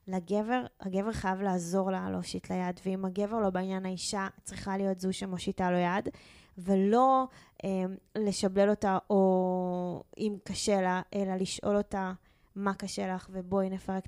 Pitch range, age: 185-220 Hz, 20-39